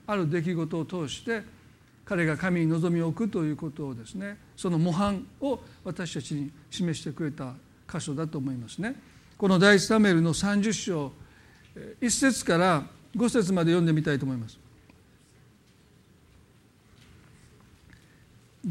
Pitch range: 160-210 Hz